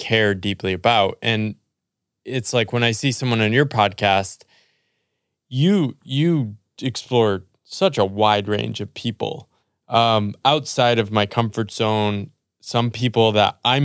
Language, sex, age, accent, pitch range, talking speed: English, male, 20-39, American, 105-130 Hz, 140 wpm